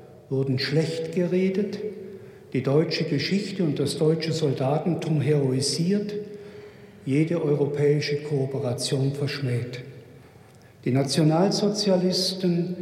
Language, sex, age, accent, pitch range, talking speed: German, male, 60-79, German, 140-175 Hz, 80 wpm